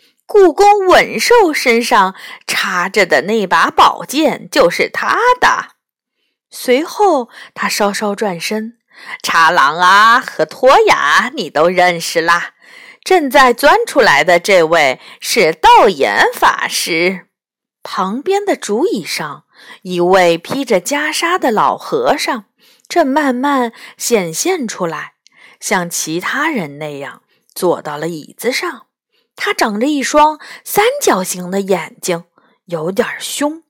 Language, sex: Chinese, female